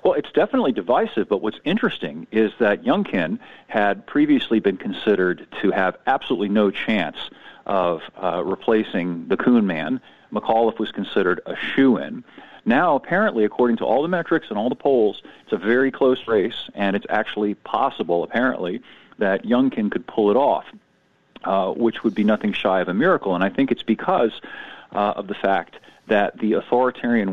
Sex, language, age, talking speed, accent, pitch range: male, English, 40-59, 175 wpm, American, 105-165 Hz